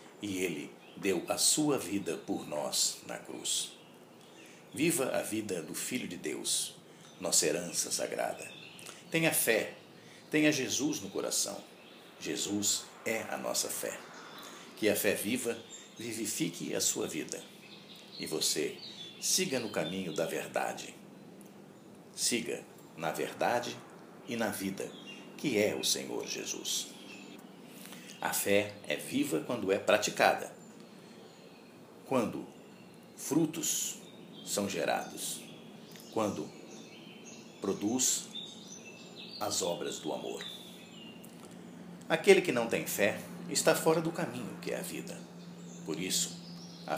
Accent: Brazilian